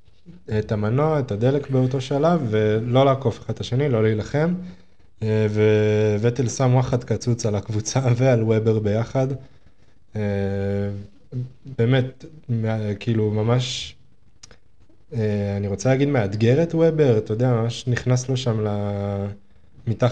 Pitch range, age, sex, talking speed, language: 105-125 Hz, 20-39, male, 100 wpm, Hebrew